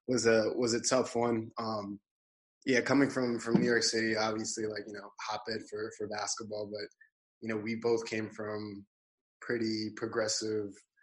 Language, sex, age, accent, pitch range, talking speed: English, male, 20-39, American, 105-115 Hz, 170 wpm